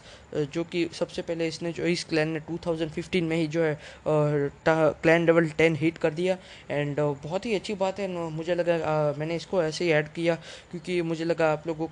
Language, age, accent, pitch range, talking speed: Hindi, 20-39, native, 160-185 Hz, 200 wpm